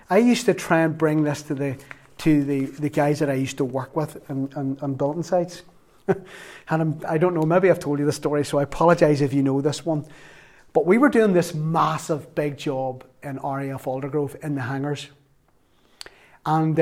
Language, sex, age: English, male, 30-49